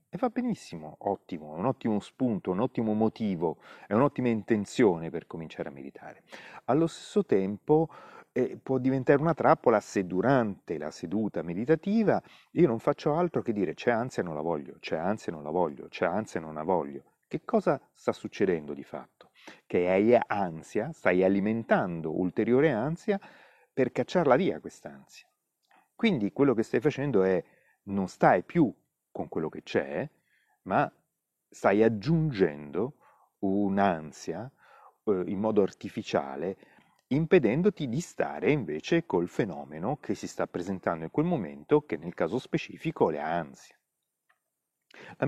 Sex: male